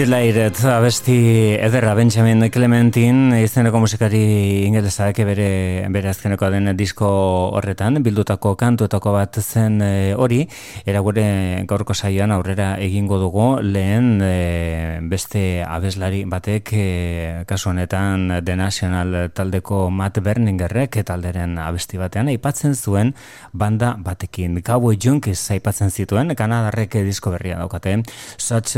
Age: 30-49